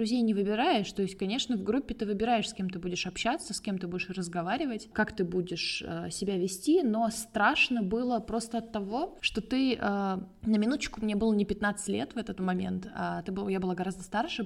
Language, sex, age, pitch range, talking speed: Russian, female, 20-39, 190-235 Hz, 210 wpm